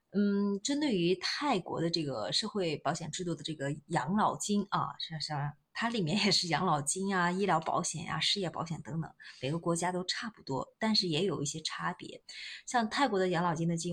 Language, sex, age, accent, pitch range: Chinese, female, 20-39, native, 150-195 Hz